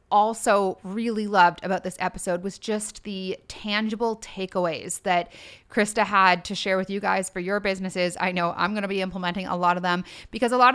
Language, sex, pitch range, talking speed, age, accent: English, female, 180-215 Hz, 200 wpm, 30-49, American